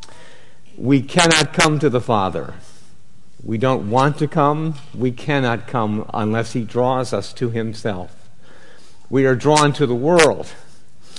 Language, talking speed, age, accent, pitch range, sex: English, 140 wpm, 50-69, American, 115-145 Hz, male